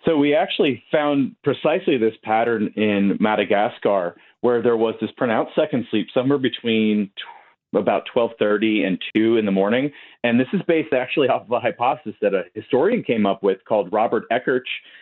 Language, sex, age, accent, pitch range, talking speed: English, male, 30-49, American, 115-155 Hz, 170 wpm